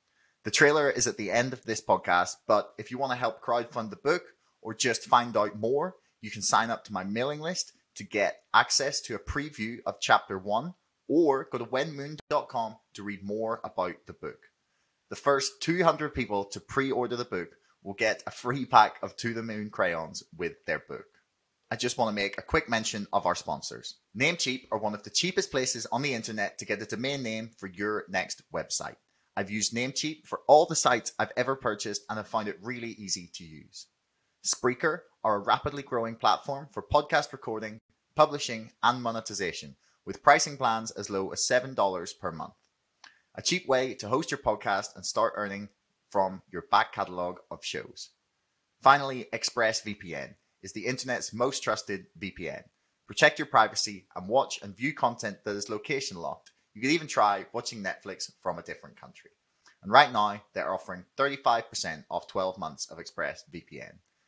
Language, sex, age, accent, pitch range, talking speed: English, male, 30-49, British, 105-135 Hz, 185 wpm